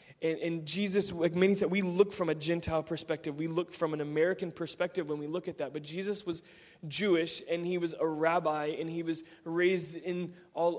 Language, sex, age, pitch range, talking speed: English, male, 20-39, 155-175 Hz, 205 wpm